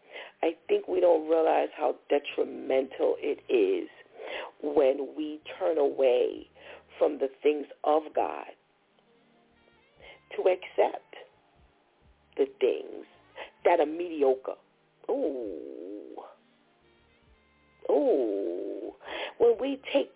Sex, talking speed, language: female, 90 wpm, English